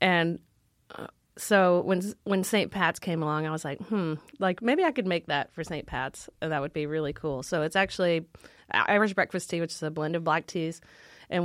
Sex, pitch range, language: female, 155-195 Hz, English